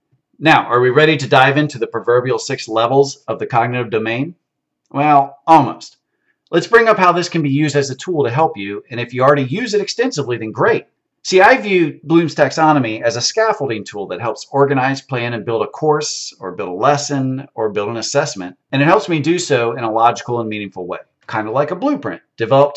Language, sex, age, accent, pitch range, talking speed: English, male, 40-59, American, 120-160 Hz, 220 wpm